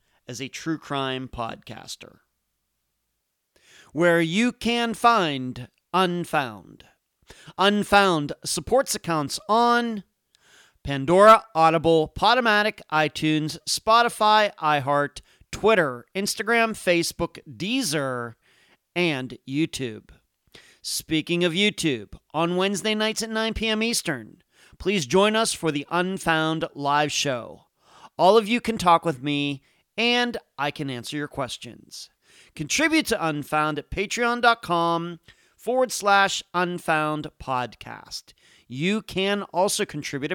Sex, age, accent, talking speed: male, 40-59, American, 105 wpm